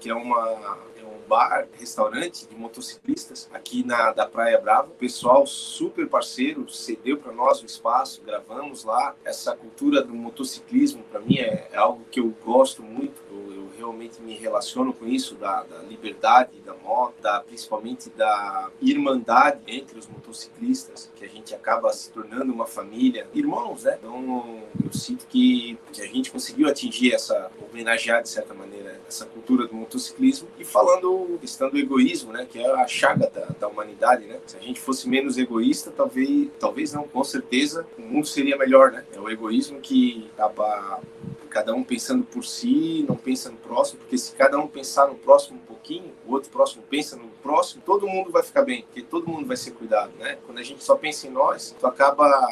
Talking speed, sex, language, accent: 185 wpm, male, Portuguese, Brazilian